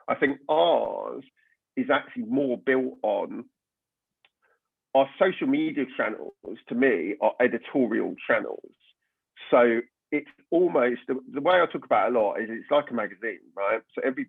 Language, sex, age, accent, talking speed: English, male, 40-59, British, 150 wpm